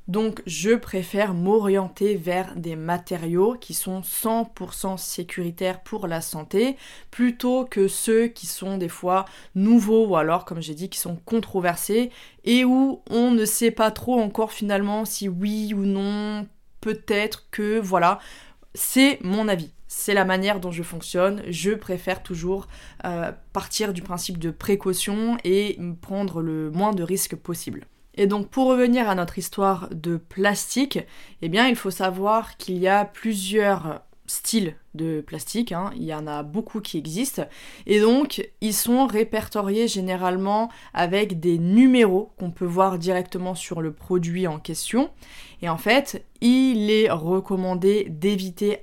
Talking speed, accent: 155 wpm, French